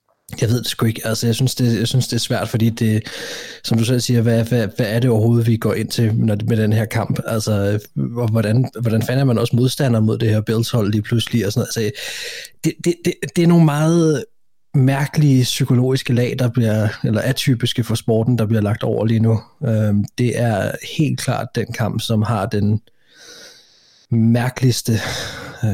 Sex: male